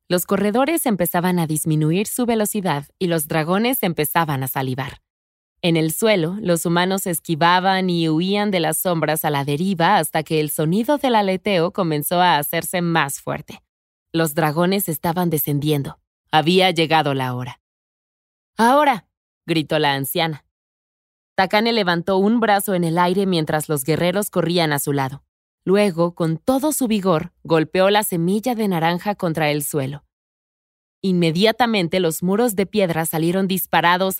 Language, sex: Spanish, female